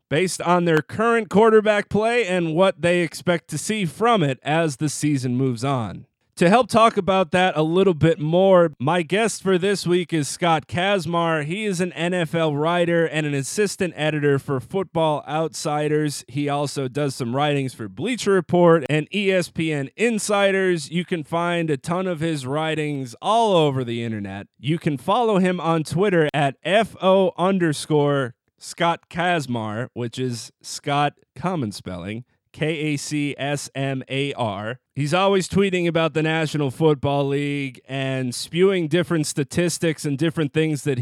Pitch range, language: 135-175 Hz, English